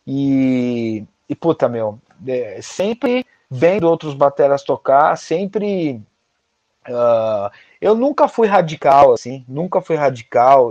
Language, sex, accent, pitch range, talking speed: Portuguese, male, Brazilian, 115-150 Hz, 100 wpm